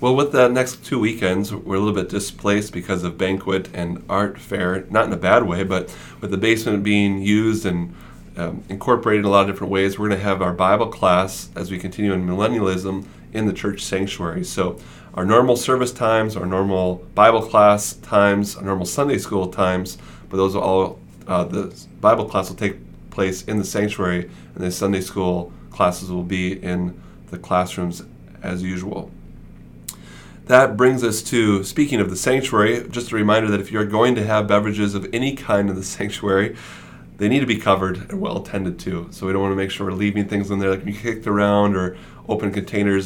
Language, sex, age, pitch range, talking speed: English, male, 30-49, 95-110 Hz, 205 wpm